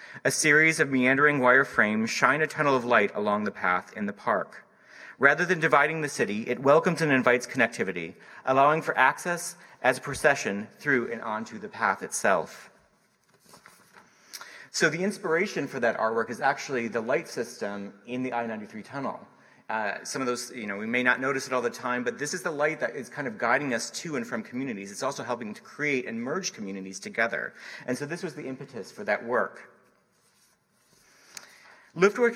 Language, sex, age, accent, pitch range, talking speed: English, male, 30-49, American, 125-170 Hz, 190 wpm